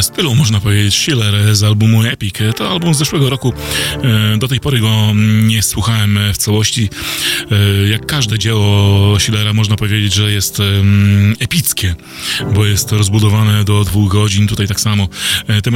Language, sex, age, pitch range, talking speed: Polish, male, 20-39, 100-110 Hz, 150 wpm